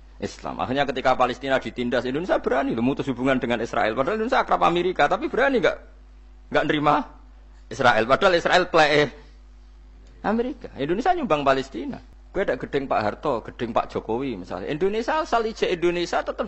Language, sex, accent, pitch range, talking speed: Indonesian, male, native, 110-170 Hz, 155 wpm